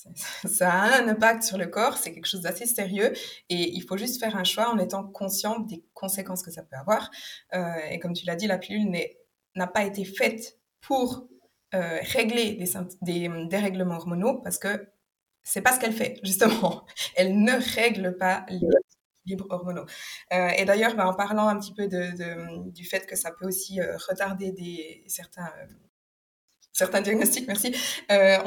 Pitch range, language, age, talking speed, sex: 180-225 Hz, French, 20-39, 190 wpm, female